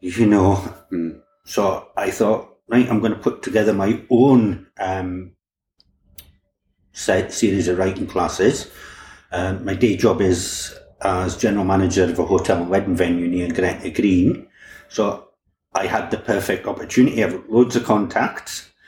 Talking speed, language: 145 wpm, English